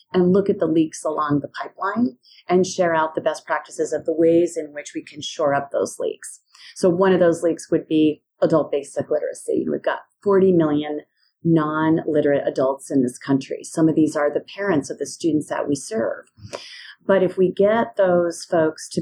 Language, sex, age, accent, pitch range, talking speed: English, female, 30-49, American, 155-190 Hz, 200 wpm